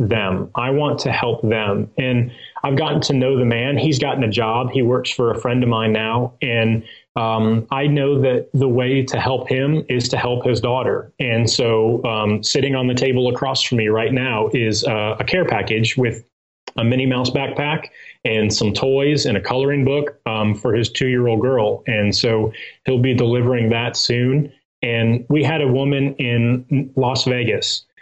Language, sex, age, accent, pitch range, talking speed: English, male, 30-49, American, 115-135 Hz, 195 wpm